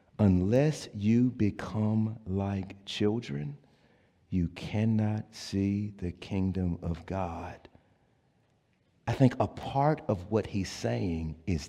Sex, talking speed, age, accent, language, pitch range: male, 110 wpm, 50-69, American, English, 85-105 Hz